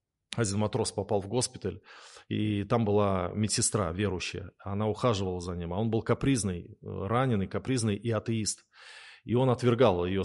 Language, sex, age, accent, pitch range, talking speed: Russian, male, 20-39, native, 95-115 Hz, 150 wpm